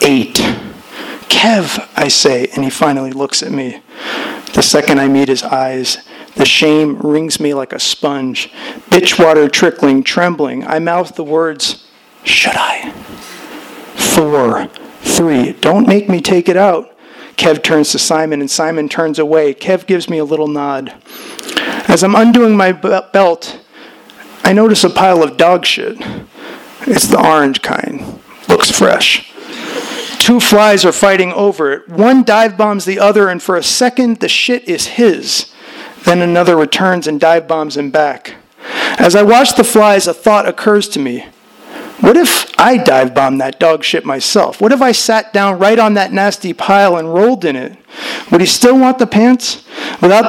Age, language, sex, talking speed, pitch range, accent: 40-59, English, male, 165 wpm, 155-215 Hz, American